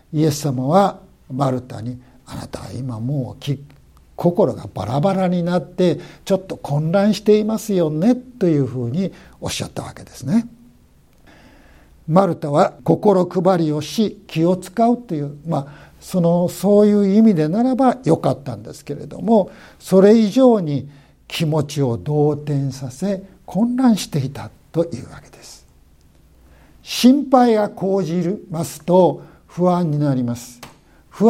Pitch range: 135-195 Hz